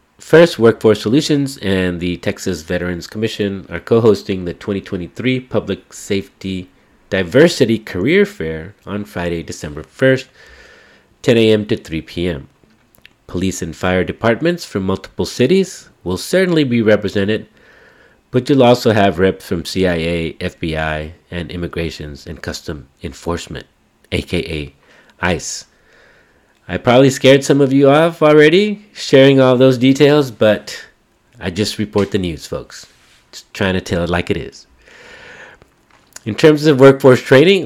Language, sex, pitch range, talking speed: English, male, 90-125 Hz, 135 wpm